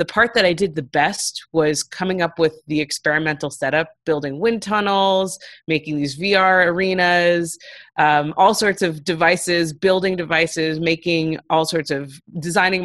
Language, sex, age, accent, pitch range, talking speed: English, female, 30-49, American, 145-170 Hz, 155 wpm